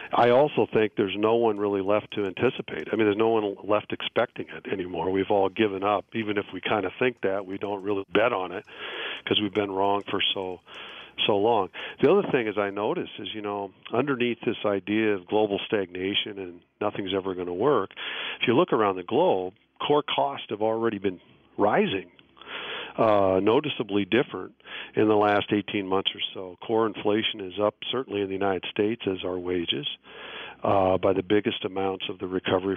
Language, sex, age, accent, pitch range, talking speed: English, male, 50-69, American, 95-110 Hz, 195 wpm